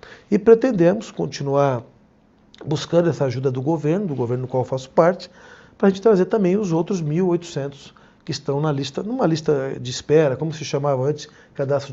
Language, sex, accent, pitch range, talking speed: Portuguese, male, Brazilian, 145-210 Hz, 180 wpm